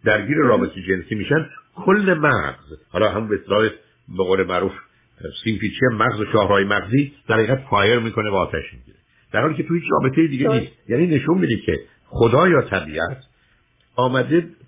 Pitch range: 105-145 Hz